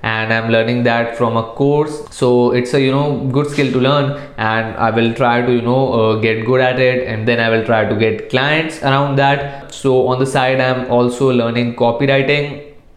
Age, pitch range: 20-39, 115-135 Hz